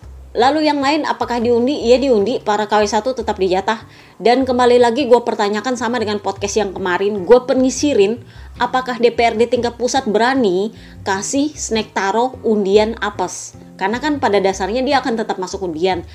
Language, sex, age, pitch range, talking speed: Indonesian, female, 20-39, 195-250 Hz, 150 wpm